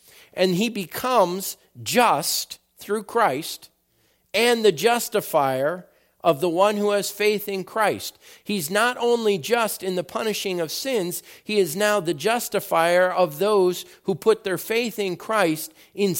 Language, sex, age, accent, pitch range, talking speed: English, male, 50-69, American, 170-230 Hz, 150 wpm